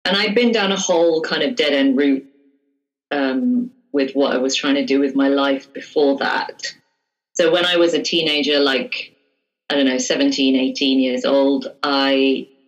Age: 30-49